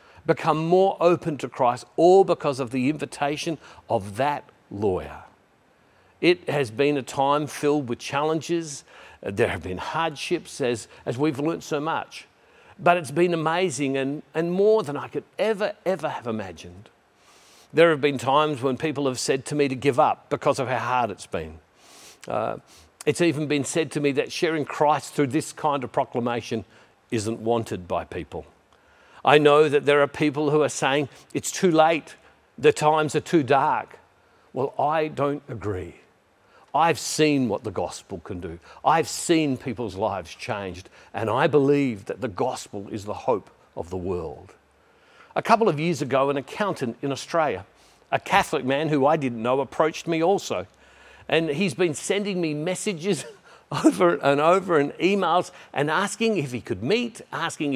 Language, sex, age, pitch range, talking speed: English, male, 50-69, 130-165 Hz, 170 wpm